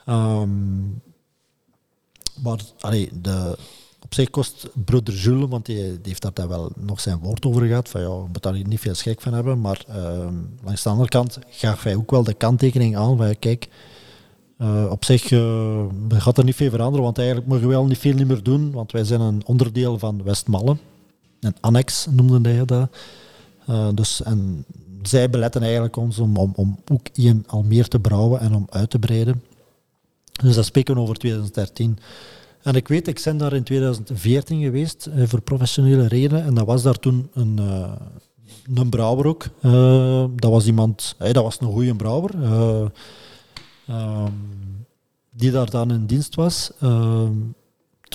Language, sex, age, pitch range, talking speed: Dutch, male, 40-59, 110-130 Hz, 180 wpm